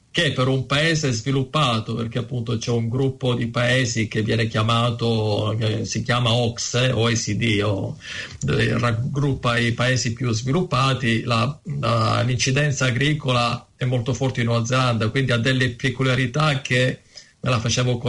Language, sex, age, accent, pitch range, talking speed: Italian, male, 40-59, native, 115-135 Hz, 140 wpm